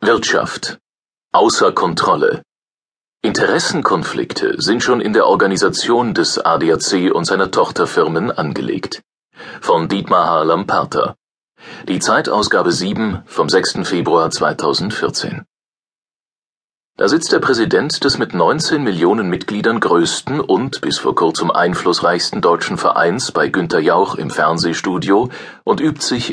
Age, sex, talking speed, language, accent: 40-59, male, 115 wpm, German, German